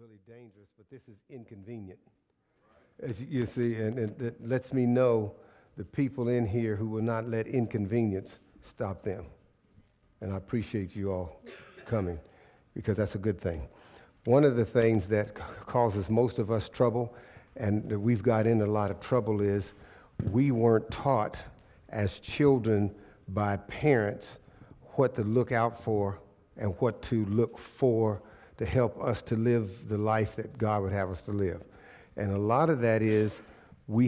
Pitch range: 105-120 Hz